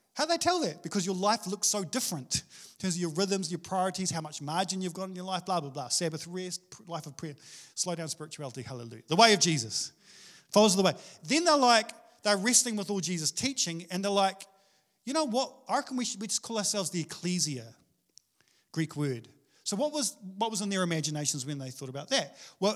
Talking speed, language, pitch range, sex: 220 wpm, English, 170-230 Hz, male